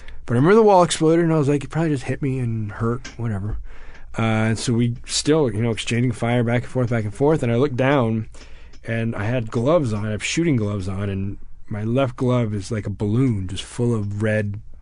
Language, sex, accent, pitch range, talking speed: English, male, American, 105-130 Hz, 240 wpm